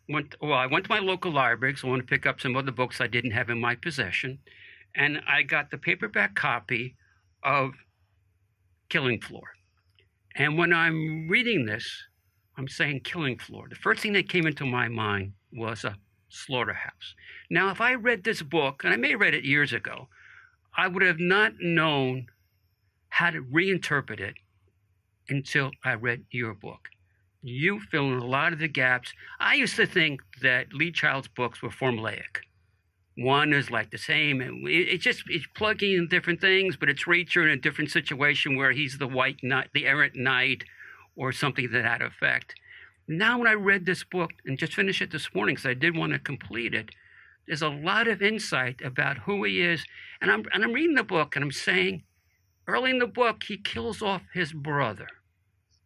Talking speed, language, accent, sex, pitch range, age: 190 wpm, English, American, male, 120-175 Hz, 60-79